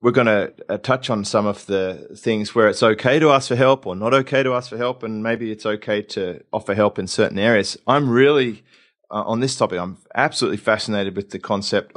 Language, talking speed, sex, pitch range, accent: English, 230 wpm, male, 100-115 Hz, Australian